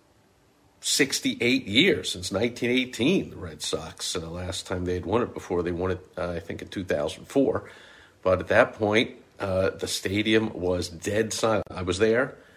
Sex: male